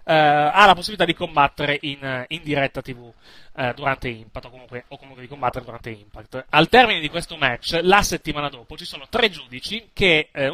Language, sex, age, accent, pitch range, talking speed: Italian, male, 30-49, native, 130-165 Hz, 200 wpm